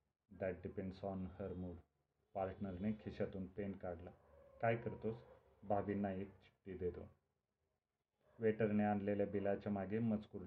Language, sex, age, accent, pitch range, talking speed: Marathi, male, 30-49, native, 90-105 Hz, 115 wpm